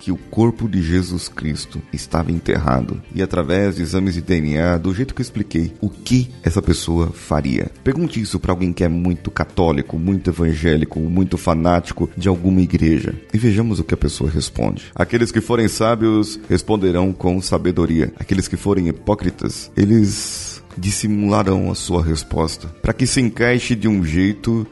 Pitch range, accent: 80-105 Hz, Brazilian